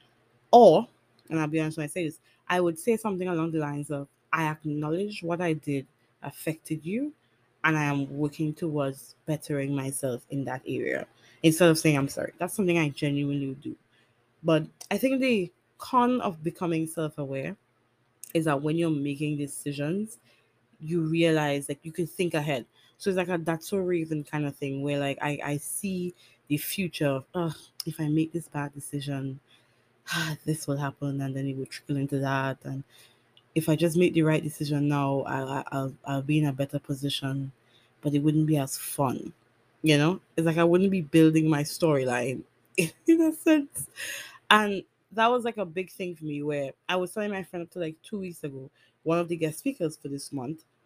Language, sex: English, female